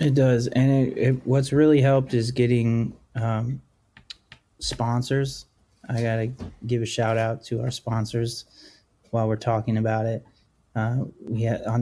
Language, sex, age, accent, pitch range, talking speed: English, male, 30-49, American, 105-120 Hz, 155 wpm